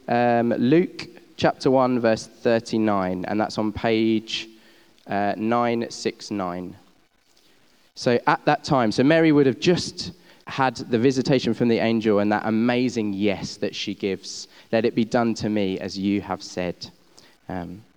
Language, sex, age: English, male, 10-29